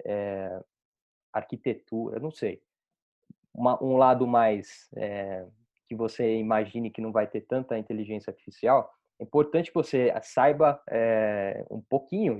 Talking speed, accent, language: 135 wpm, Brazilian, Portuguese